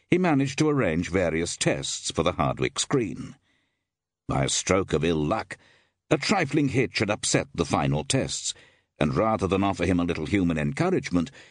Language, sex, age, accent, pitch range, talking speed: English, male, 60-79, British, 85-135 Hz, 170 wpm